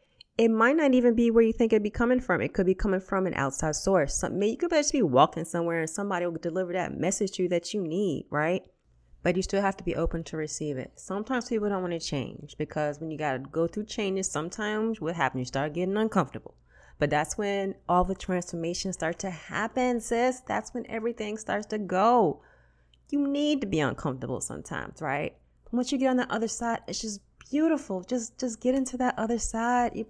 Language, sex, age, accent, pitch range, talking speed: English, female, 30-49, American, 160-220 Hz, 220 wpm